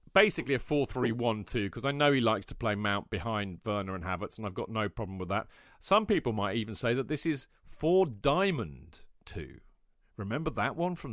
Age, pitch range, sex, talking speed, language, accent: 40-59, 105-150 Hz, male, 190 wpm, English, British